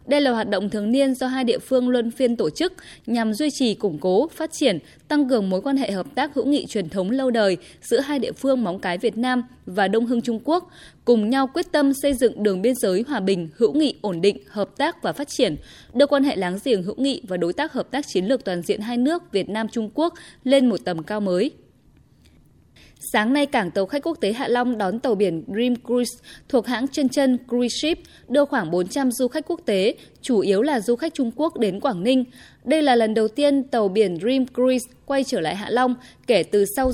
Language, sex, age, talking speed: Vietnamese, female, 20-39, 240 wpm